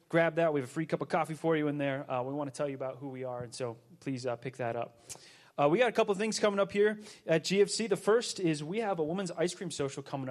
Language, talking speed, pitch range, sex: English, 310 wpm, 140-175 Hz, male